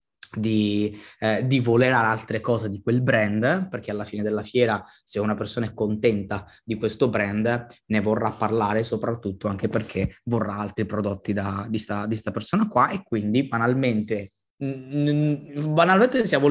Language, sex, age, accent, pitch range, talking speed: Italian, male, 20-39, native, 105-125 Hz, 155 wpm